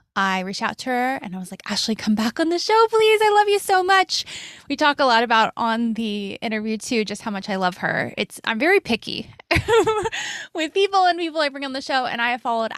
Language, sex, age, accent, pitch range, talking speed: English, female, 20-39, American, 195-270 Hz, 250 wpm